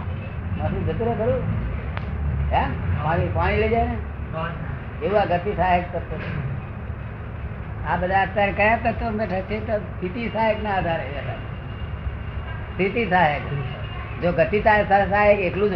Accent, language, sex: native, Gujarati, female